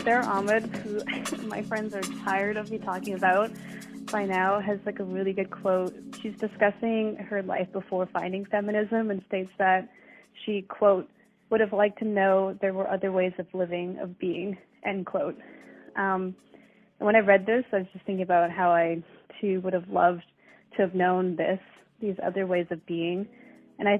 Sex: female